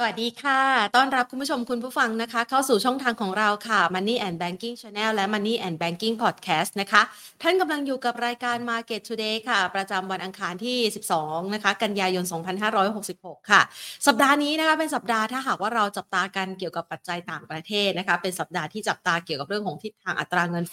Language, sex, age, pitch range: Thai, female, 30-49, 185-240 Hz